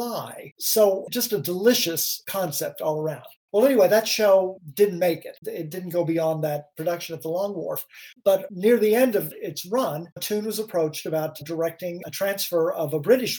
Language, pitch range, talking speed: English, 155-195 Hz, 190 wpm